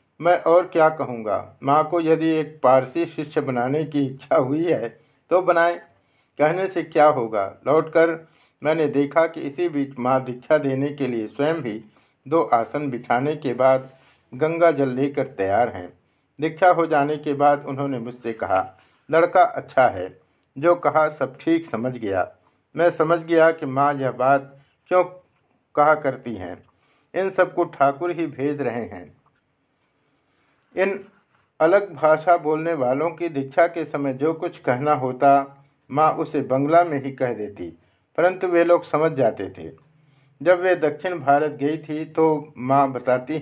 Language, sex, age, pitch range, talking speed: Hindi, male, 60-79, 135-165 Hz, 160 wpm